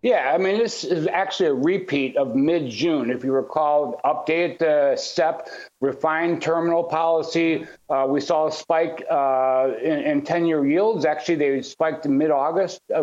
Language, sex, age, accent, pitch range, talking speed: English, male, 60-79, American, 150-185 Hz, 155 wpm